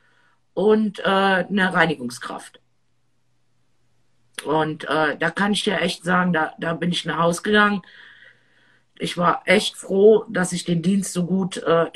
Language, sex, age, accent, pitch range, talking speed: German, female, 50-69, German, 160-210 Hz, 155 wpm